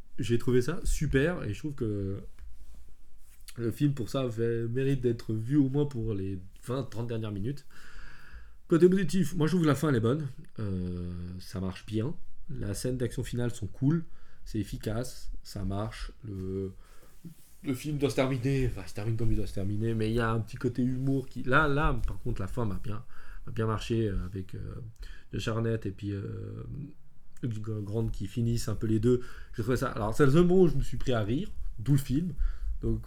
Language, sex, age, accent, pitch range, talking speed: French, male, 20-39, French, 105-140 Hz, 205 wpm